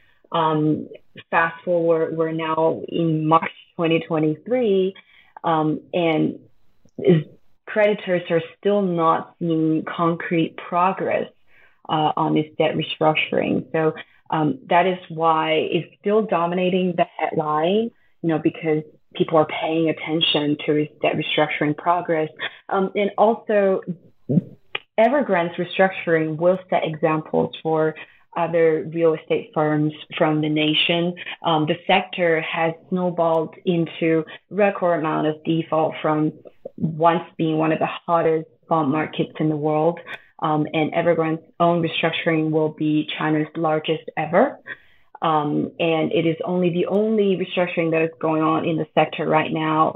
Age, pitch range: 30-49, 155-175 Hz